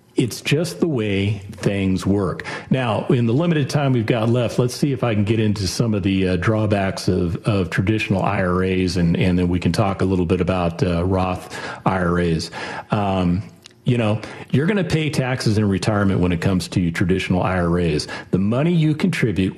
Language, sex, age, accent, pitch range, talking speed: English, male, 40-59, American, 95-130 Hz, 195 wpm